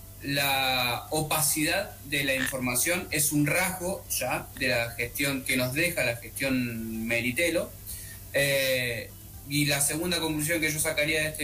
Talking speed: 140 wpm